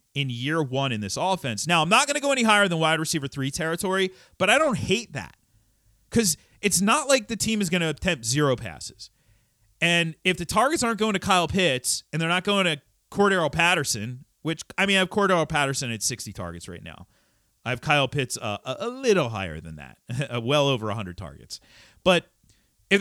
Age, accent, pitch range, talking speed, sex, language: 40-59, American, 115-170 Hz, 210 wpm, male, English